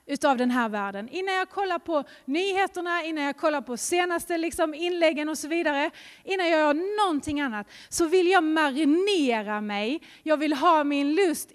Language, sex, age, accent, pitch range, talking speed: Swedish, female, 30-49, native, 245-335 Hz, 175 wpm